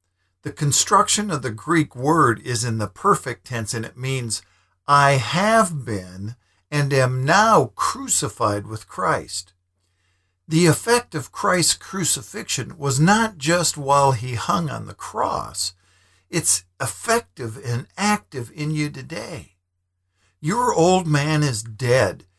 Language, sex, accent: English, male, American